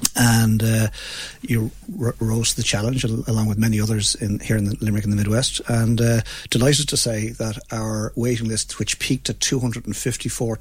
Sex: male